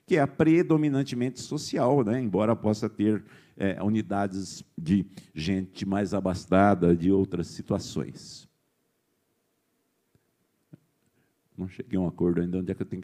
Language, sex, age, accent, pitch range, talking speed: Portuguese, male, 50-69, Brazilian, 95-135 Hz, 130 wpm